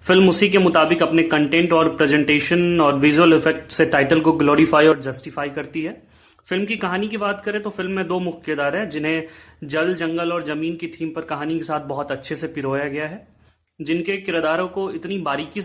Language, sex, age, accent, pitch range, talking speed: Hindi, male, 30-49, native, 155-185 Hz, 205 wpm